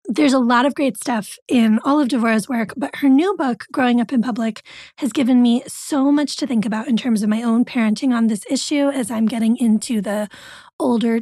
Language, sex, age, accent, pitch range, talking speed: English, female, 20-39, American, 225-275 Hz, 225 wpm